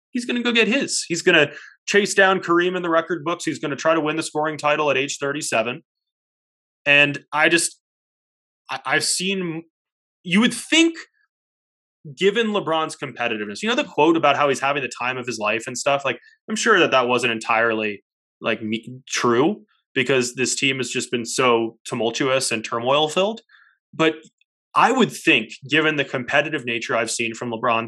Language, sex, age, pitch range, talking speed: English, male, 20-39, 125-160 Hz, 185 wpm